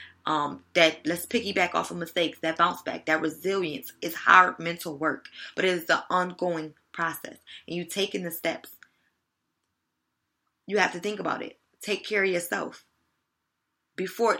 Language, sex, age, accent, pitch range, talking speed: English, female, 20-39, American, 170-220 Hz, 160 wpm